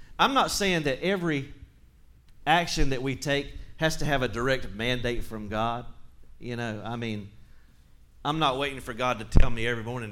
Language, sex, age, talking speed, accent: English, male, 40-59, 185 wpm, American